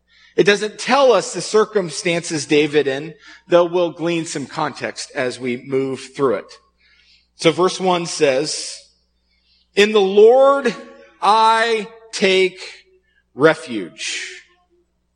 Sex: male